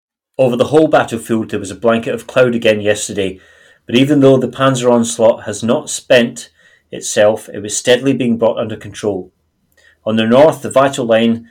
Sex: male